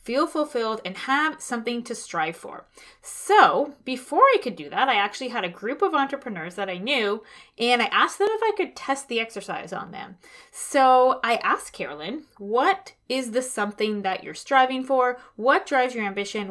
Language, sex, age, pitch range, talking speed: English, female, 20-39, 205-270 Hz, 190 wpm